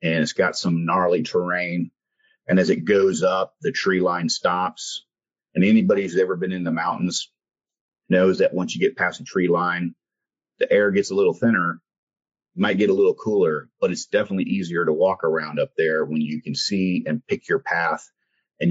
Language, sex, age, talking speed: English, male, 40-59, 195 wpm